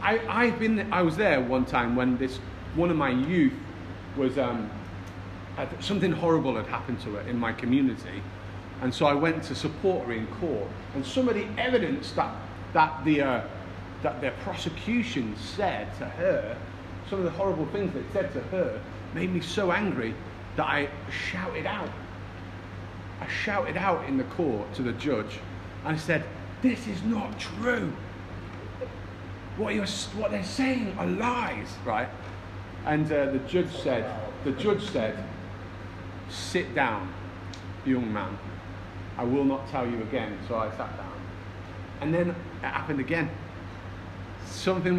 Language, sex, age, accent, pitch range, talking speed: English, male, 40-59, British, 95-135 Hz, 155 wpm